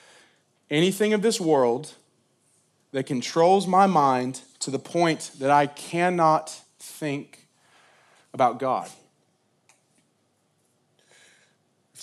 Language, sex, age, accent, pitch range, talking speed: English, male, 30-49, American, 115-155 Hz, 90 wpm